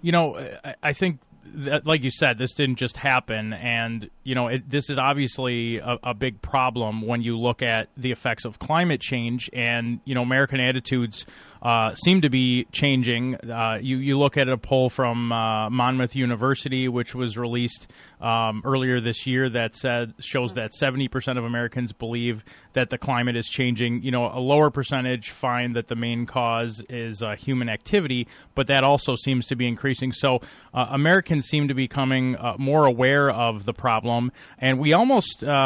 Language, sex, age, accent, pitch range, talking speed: English, male, 30-49, American, 115-135 Hz, 180 wpm